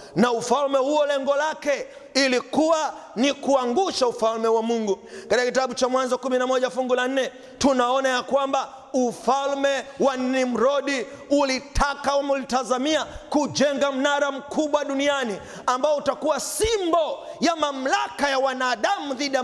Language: Swahili